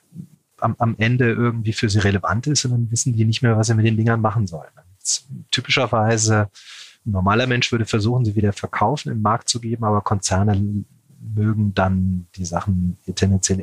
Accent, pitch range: German, 100-120 Hz